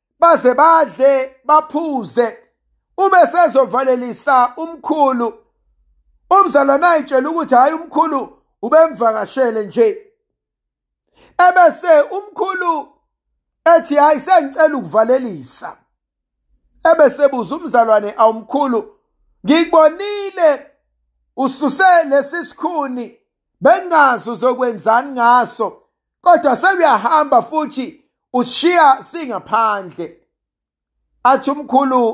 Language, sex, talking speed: English, male, 75 wpm